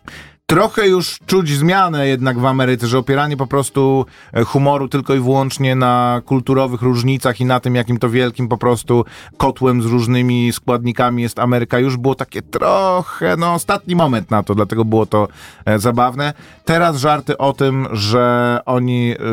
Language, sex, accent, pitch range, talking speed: Polish, male, native, 110-130 Hz, 160 wpm